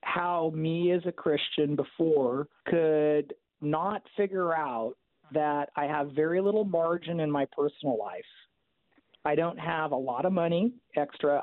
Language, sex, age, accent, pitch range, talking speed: English, male, 50-69, American, 150-195 Hz, 145 wpm